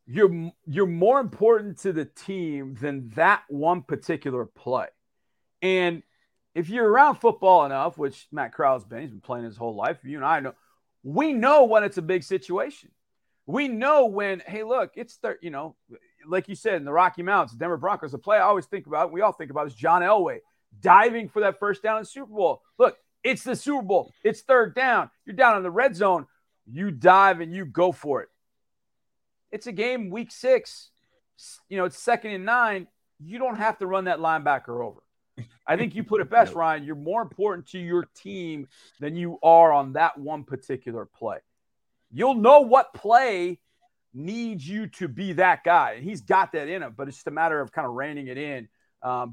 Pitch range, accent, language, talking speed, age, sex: 150-220 Hz, American, English, 205 wpm, 40-59, male